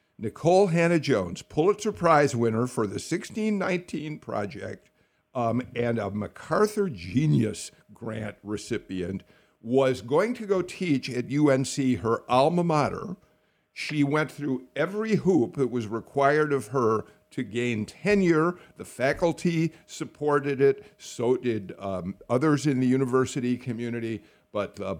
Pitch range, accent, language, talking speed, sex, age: 115-155 Hz, American, English, 125 wpm, male, 50-69